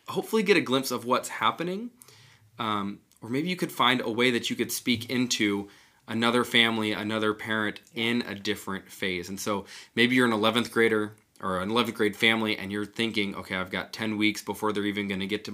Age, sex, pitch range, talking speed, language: 20-39, male, 100-120 Hz, 210 wpm, English